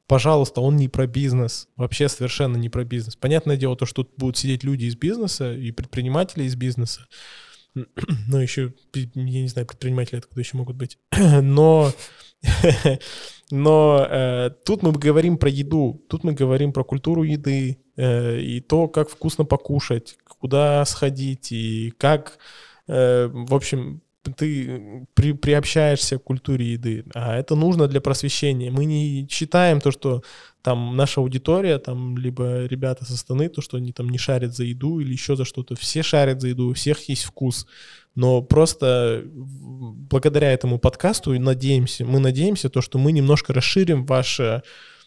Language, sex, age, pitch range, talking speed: Russian, male, 20-39, 125-145 Hz, 155 wpm